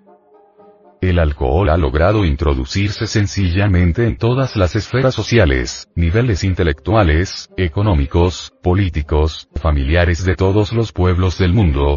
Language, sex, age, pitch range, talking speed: Spanish, male, 40-59, 85-110 Hz, 110 wpm